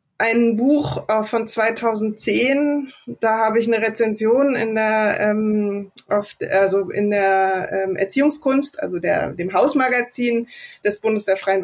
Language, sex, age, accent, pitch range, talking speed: German, female, 20-39, German, 210-245 Hz, 135 wpm